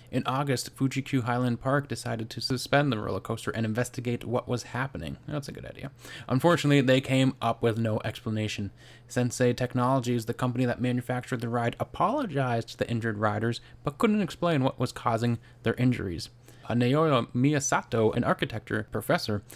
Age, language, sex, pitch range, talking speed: 20-39, English, male, 115-135 Hz, 165 wpm